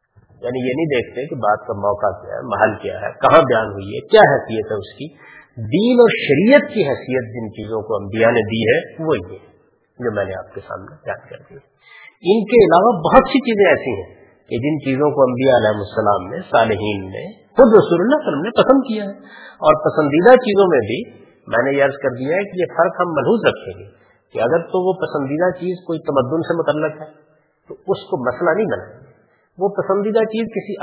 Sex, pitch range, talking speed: female, 115-195 Hz, 220 wpm